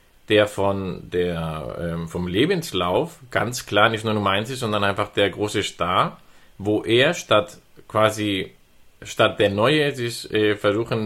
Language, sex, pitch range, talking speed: German, male, 100-120 Hz, 145 wpm